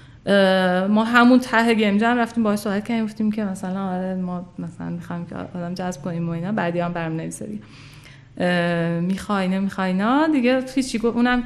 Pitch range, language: 185-230 Hz, Persian